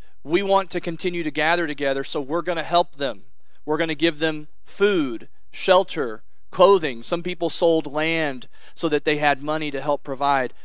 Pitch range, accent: 135-165 Hz, American